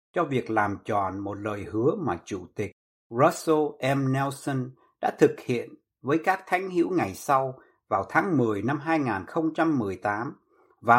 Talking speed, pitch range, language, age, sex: 155 wpm, 125-170 Hz, Vietnamese, 60-79, male